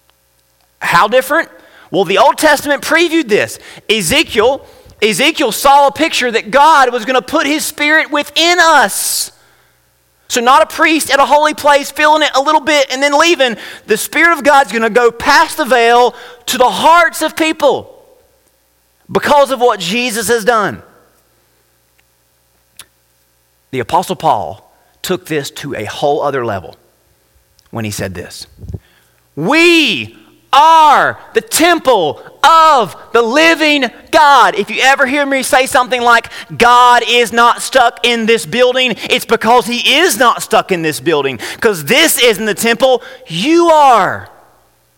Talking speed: 150 wpm